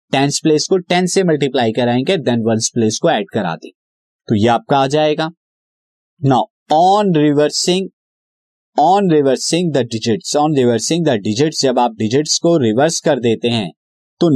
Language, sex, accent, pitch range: Hindi, male, native, 130-180 Hz